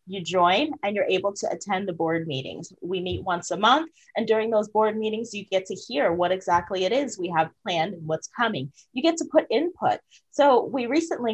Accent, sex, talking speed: American, female, 220 wpm